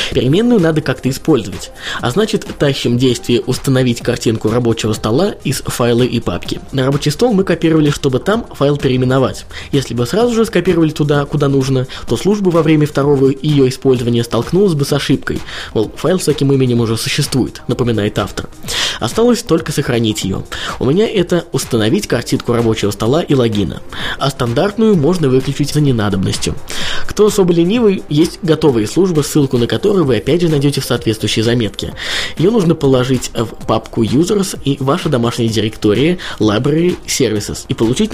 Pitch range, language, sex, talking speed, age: 115-155 Hz, Russian, male, 160 wpm, 20-39